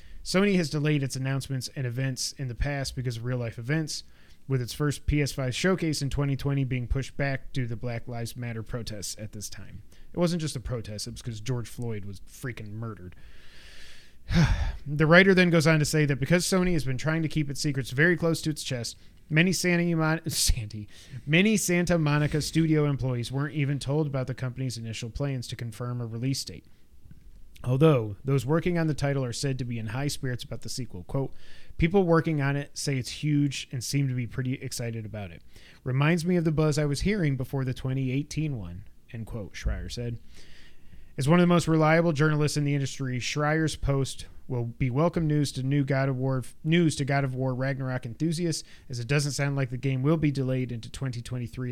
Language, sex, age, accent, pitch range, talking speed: English, male, 30-49, American, 120-150 Hz, 205 wpm